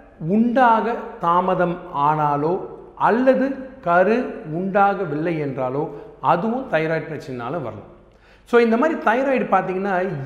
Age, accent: 40-59, native